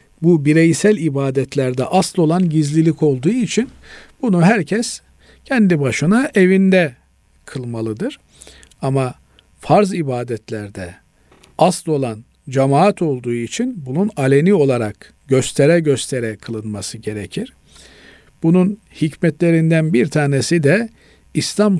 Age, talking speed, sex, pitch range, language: 50-69, 95 wpm, male, 130-175 Hz, Turkish